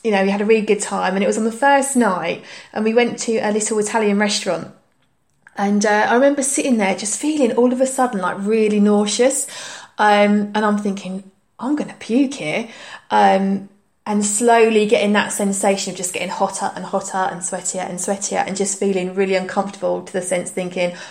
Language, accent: English, British